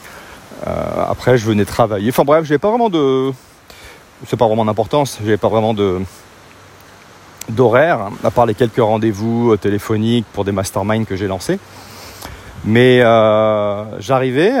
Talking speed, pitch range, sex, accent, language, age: 145 wpm, 100-130 Hz, male, French, French, 40-59